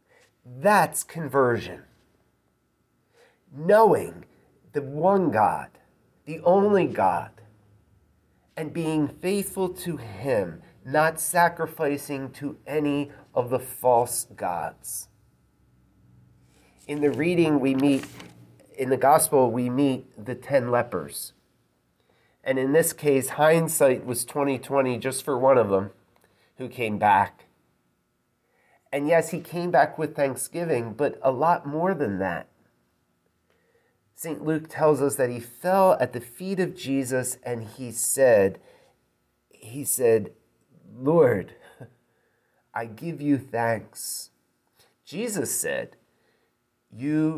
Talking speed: 115 wpm